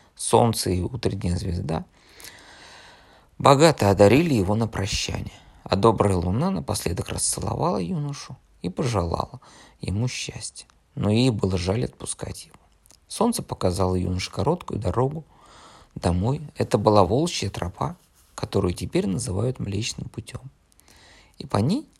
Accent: native